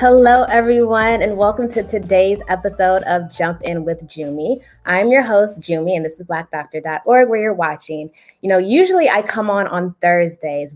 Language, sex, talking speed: English, female, 175 wpm